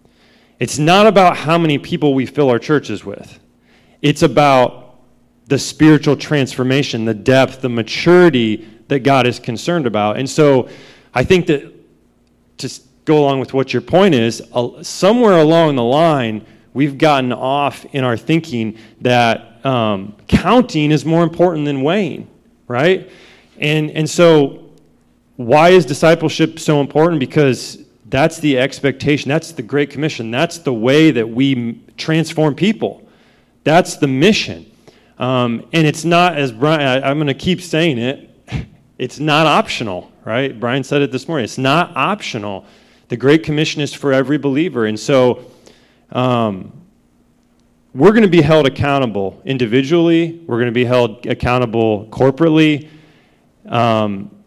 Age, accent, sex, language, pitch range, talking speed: 30-49, American, male, English, 125-155 Hz, 145 wpm